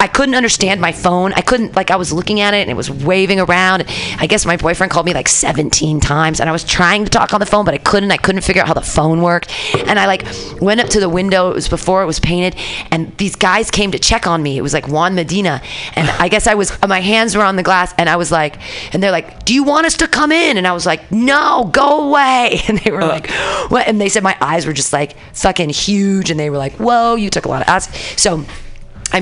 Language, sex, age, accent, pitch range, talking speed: English, female, 30-49, American, 155-210 Hz, 275 wpm